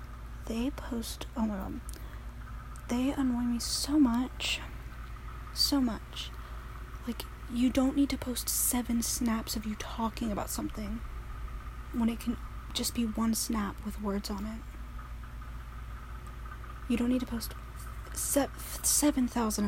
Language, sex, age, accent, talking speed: English, female, 10-29, American, 130 wpm